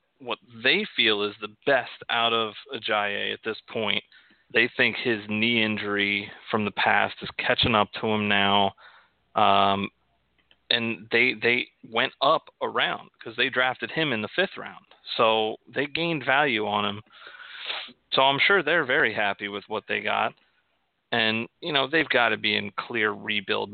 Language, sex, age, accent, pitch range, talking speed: English, male, 30-49, American, 100-120 Hz, 170 wpm